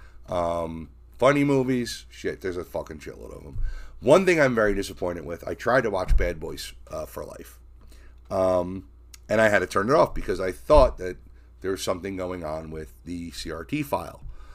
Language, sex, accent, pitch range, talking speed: English, male, American, 70-105 Hz, 190 wpm